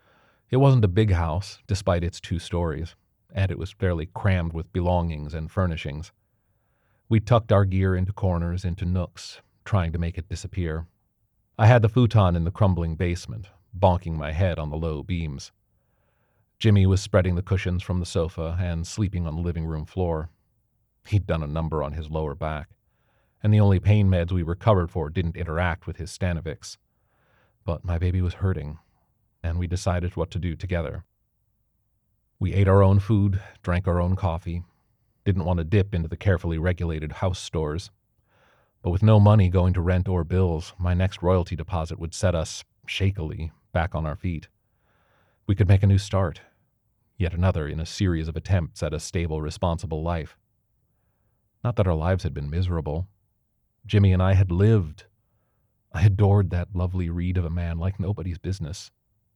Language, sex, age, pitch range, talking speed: English, male, 40-59, 85-105 Hz, 175 wpm